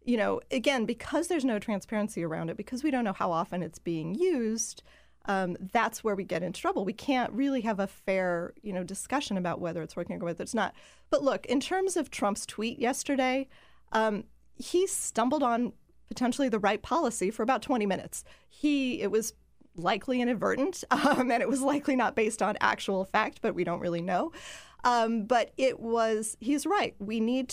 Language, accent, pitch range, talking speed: English, American, 195-260 Hz, 195 wpm